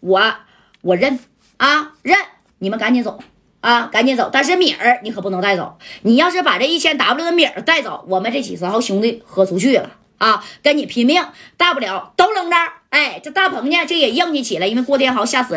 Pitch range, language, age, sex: 205-290 Hz, Chinese, 20-39, female